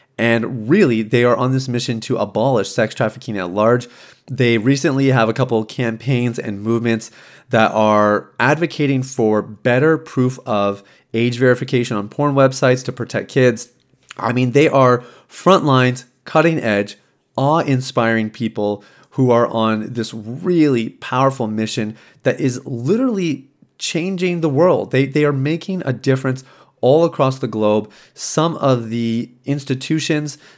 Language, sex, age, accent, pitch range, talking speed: English, male, 30-49, American, 110-135 Hz, 145 wpm